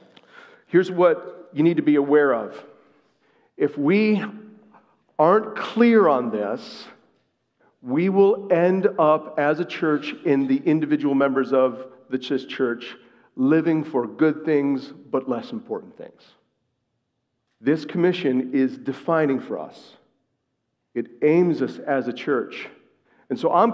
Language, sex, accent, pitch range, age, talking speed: English, male, American, 140-205 Hz, 50-69, 130 wpm